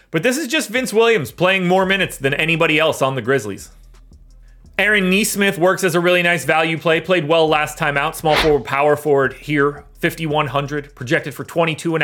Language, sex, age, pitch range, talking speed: English, male, 30-49, 150-195 Hz, 195 wpm